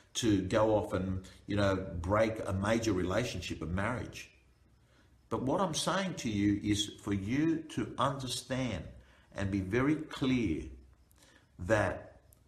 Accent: Australian